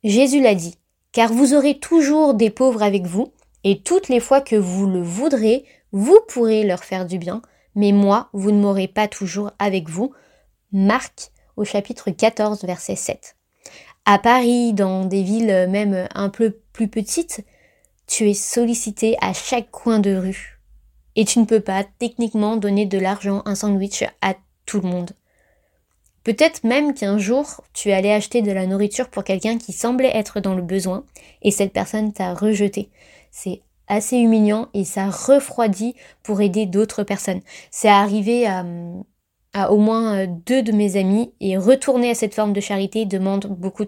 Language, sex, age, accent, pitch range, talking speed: French, female, 20-39, French, 195-230 Hz, 170 wpm